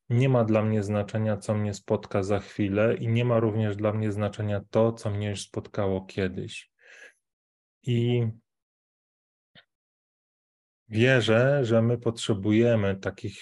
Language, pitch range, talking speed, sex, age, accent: Polish, 105-115 Hz, 130 wpm, male, 20-39, native